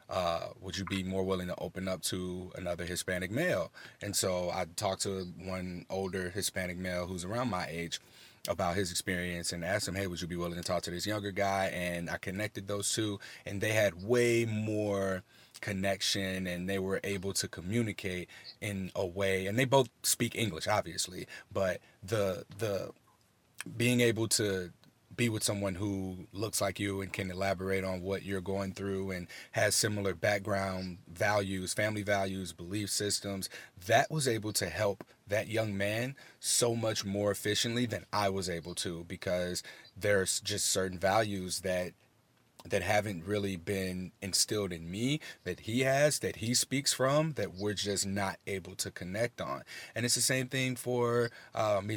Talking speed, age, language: 175 wpm, 30-49, English